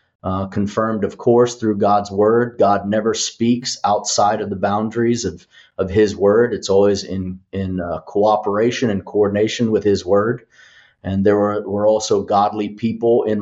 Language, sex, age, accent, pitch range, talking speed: English, male, 30-49, American, 100-115 Hz, 165 wpm